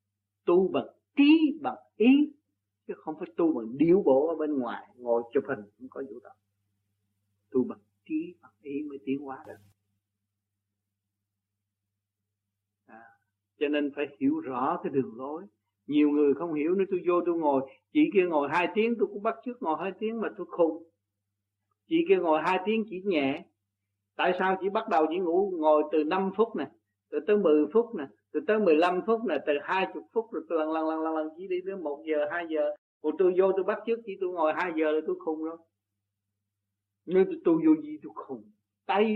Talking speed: 200 wpm